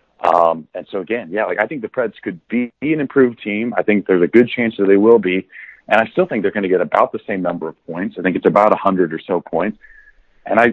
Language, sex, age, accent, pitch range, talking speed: German, male, 30-49, American, 95-120 Hz, 275 wpm